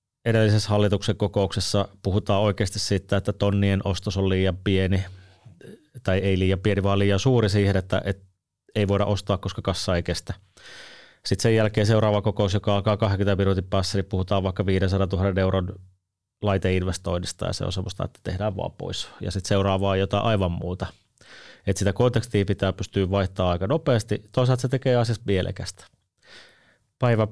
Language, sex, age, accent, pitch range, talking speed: Finnish, male, 30-49, native, 95-110 Hz, 165 wpm